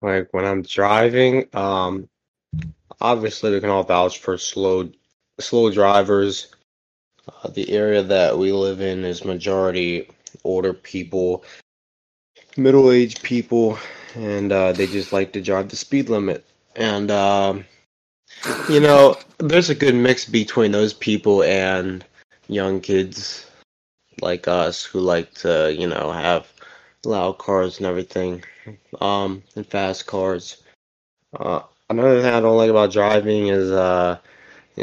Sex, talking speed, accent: male, 135 wpm, American